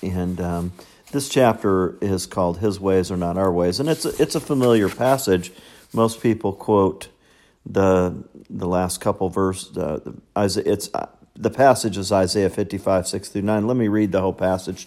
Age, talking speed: 50-69, 185 wpm